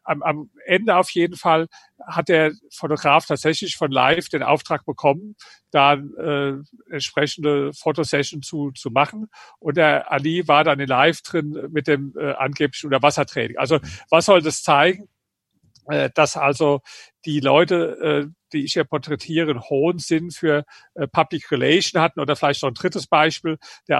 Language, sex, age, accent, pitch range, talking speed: German, male, 50-69, German, 140-165 Hz, 165 wpm